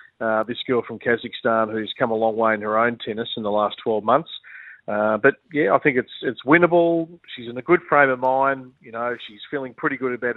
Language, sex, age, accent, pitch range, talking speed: English, male, 40-59, Australian, 115-140 Hz, 235 wpm